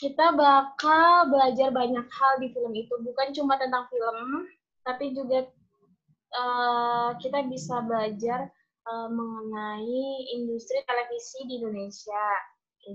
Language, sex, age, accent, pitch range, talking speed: Indonesian, female, 20-39, native, 225-275 Hz, 115 wpm